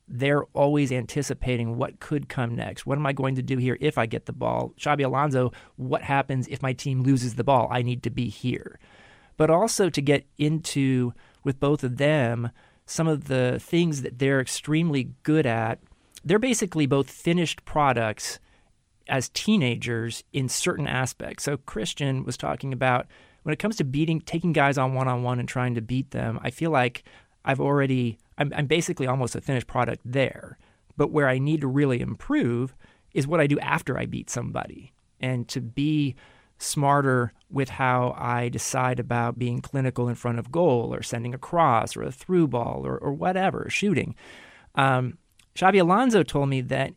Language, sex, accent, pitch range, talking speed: English, male, American, 125-145 Hz, 180 wpm